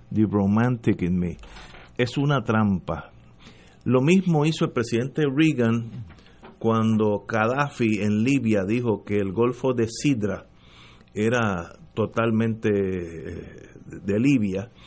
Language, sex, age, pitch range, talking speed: English, male, 50-69, 105-130 Hz, 110 wpm